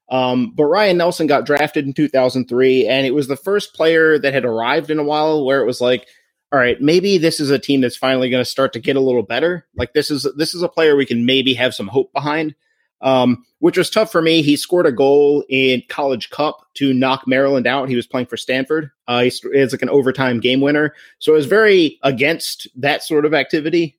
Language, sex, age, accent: English, male, 30-49, American